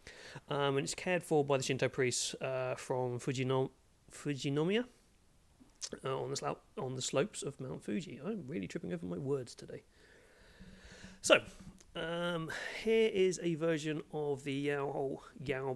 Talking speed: 150 wpm